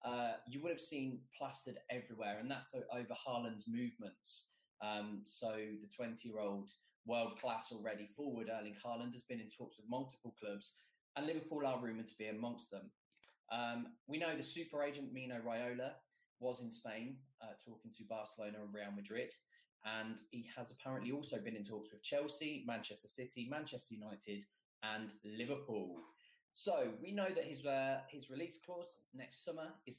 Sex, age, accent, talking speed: male, 20-39, British, 165 wpm